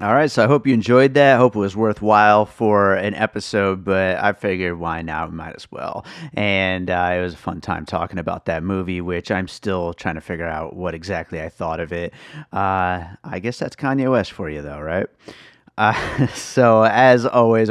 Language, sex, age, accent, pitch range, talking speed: English, male, 30-49, American, 90-115 Hz, 210 wpm